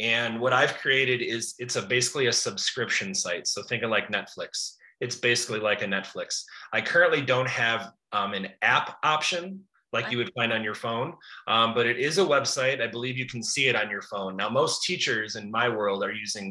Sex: male